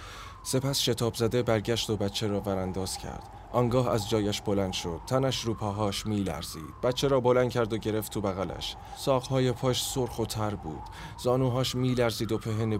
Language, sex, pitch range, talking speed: Persian, male, 90-110 Hz, 170 wpm